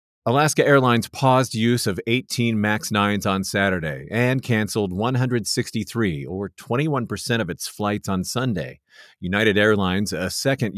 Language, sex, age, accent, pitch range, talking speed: English, male, 40-59, American, 95-120 Hz, 140 wpm